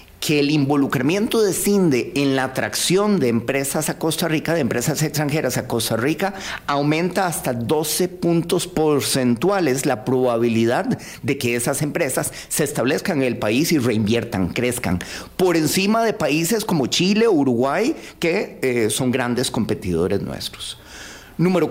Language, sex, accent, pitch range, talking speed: Spanish, male, Mexican, 120-160 Hz, 145 wpm